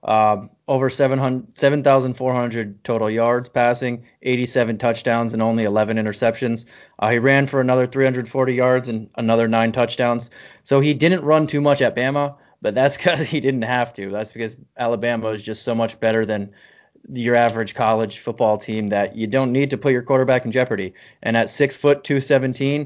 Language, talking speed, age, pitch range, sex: English, 180 wpm, 20-39, 115-130 Hz, male